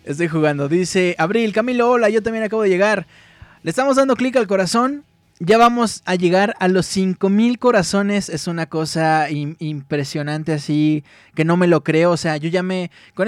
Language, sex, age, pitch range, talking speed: Spanish, male, 20-39, 155-195 Hz, 190 wpm